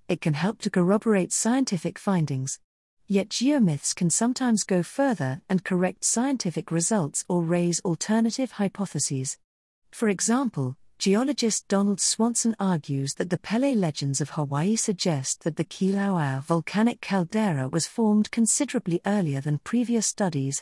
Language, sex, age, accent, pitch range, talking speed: English, female, 40-59, British, 165-215 Hz, 135 wpm